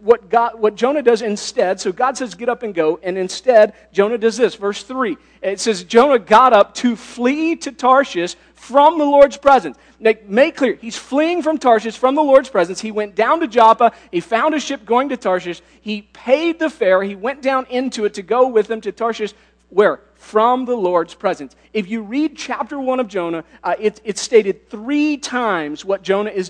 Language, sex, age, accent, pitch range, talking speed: English, male, 40-59, American, 195-255 Hz, 210 wpm